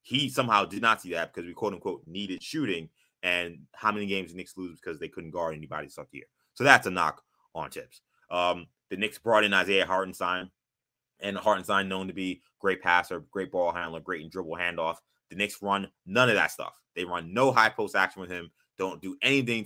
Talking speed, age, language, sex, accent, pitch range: 215 wpm, 20-39, English, male, American, 95-120 Hz